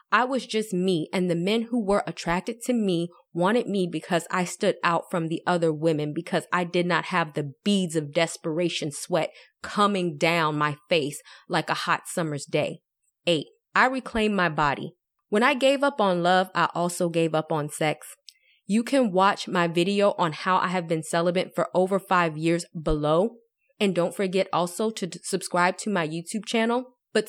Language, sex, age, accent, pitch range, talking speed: English, female, 20-39, American, 170-210 Hz, 185 wpm